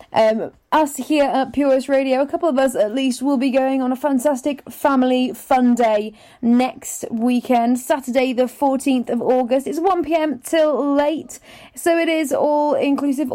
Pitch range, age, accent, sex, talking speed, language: 245-300 Hz, 30-49, British, female, 170 wpm, English